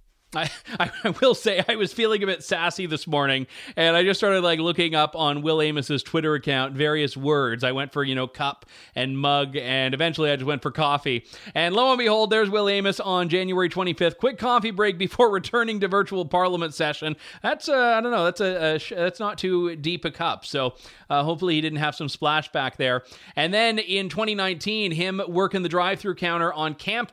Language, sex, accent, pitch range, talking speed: English, male, American, 150-210 Hz, 210 wpm